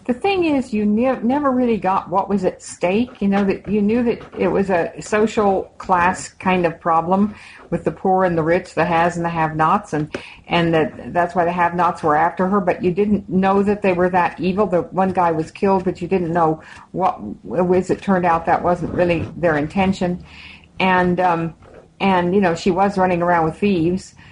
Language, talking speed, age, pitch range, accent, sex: English, 210 wpm, 50-69, 175-215 Hz, American, female